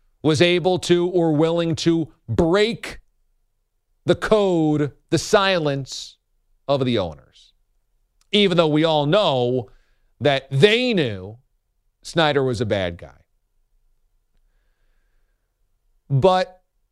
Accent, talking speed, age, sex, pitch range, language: American, 100 wpm, 40-59, male, 115-170 Hz, English